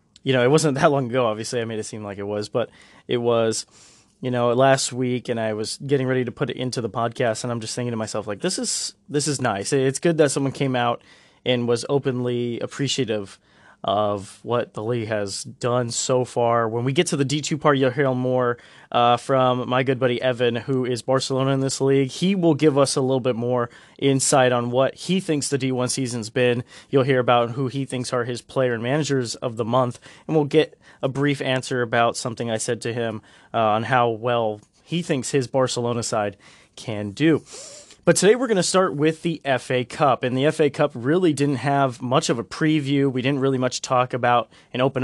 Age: 20-39